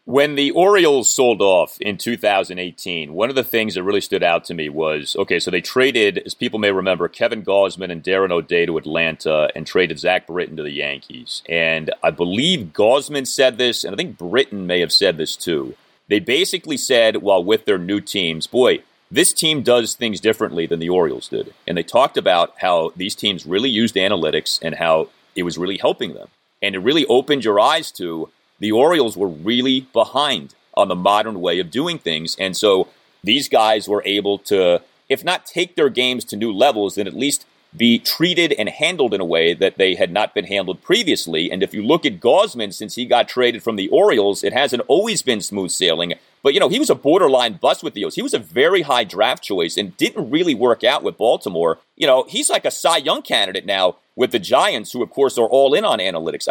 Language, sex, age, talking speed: English, male, 30-49, 220 wpm